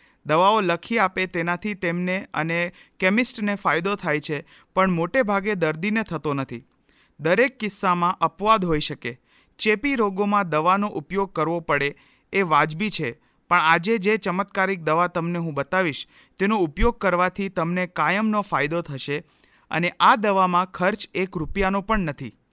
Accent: native